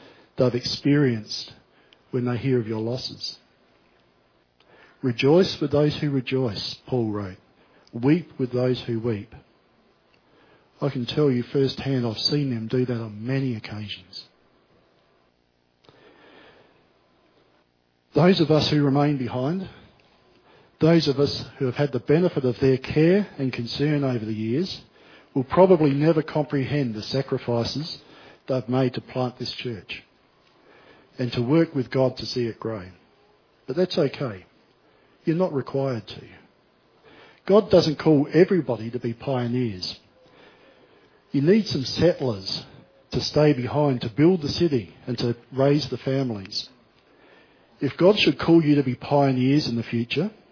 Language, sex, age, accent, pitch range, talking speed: English, male, 50-69, Australian, 120-145 Hz, 140 wpm